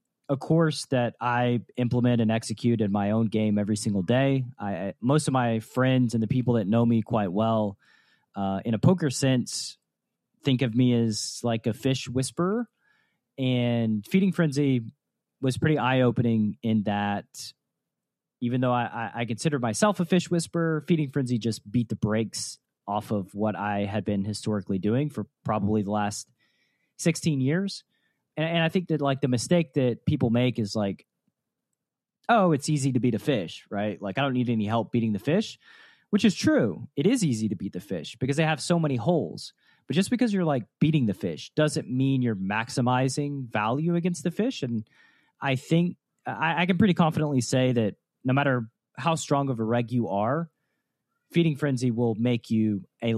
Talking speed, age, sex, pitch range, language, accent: 185 wpm, 30-49, male, 110-155 Hz, English, American